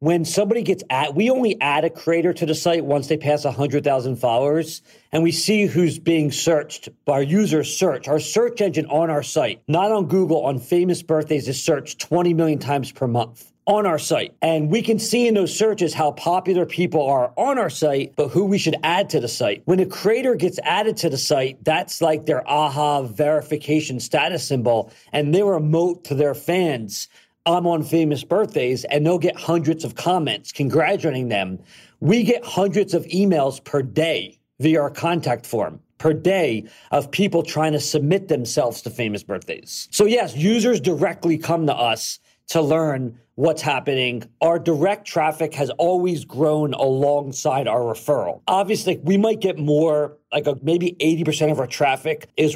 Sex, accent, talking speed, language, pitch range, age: male, American, 180 wpm, English, 145-175 Hz, 40-59